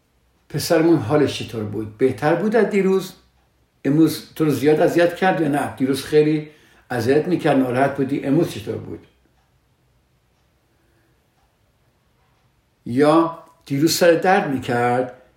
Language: Persian